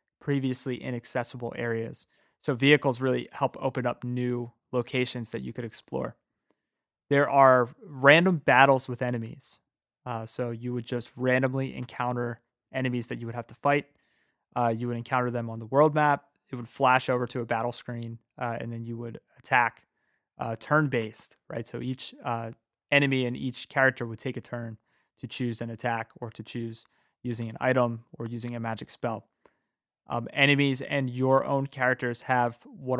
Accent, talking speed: American, 175 wpm